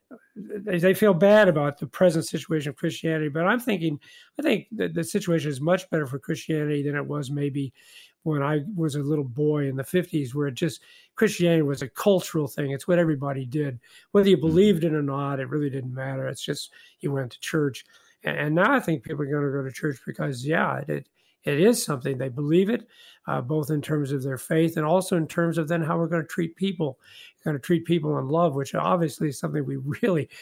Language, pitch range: English, 145-180 Hz